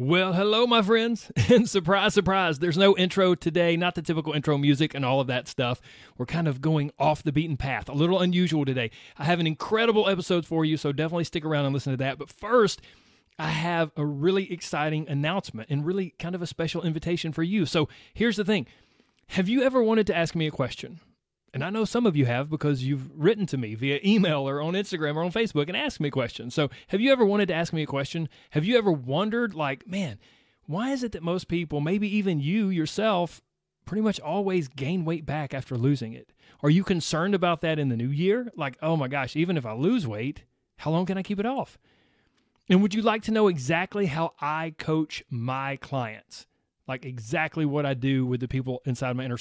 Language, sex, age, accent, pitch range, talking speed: English, male, 30-49, American, 140-190 Hz, 225 wpm